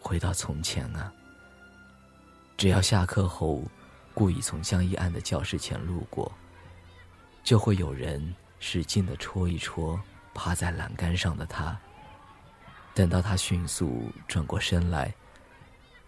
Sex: male